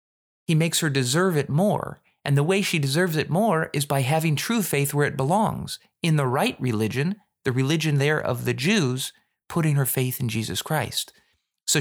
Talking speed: 195 wpm